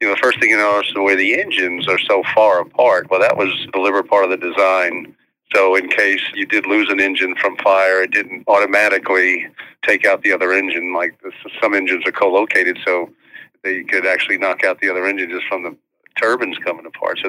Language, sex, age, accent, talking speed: English, male, 50-69, American, 225 wpm